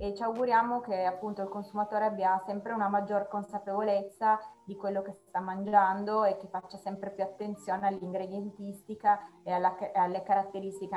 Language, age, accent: Italian, 20-39, native